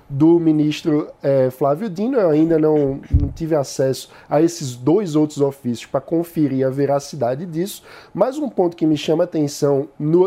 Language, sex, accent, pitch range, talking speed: Portuguese, male, Brazilian, 150-220 Hz, 175 wpm